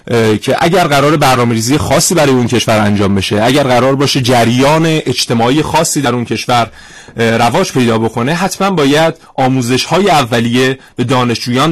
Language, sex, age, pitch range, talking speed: Persian, male, 30-49, 115-140 Hz, 145 wpm